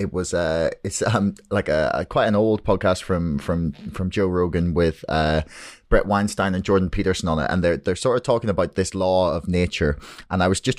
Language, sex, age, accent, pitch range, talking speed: English, male, 20-39, British, 90-105 Hz, 235 wpm